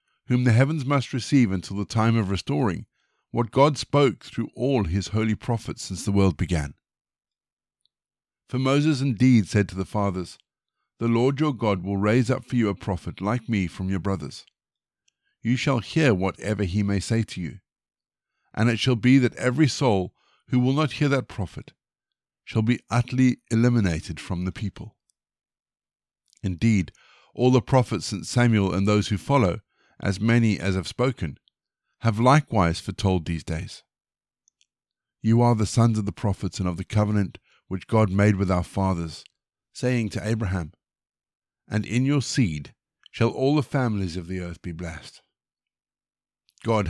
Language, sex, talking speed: English, male, 165 wpm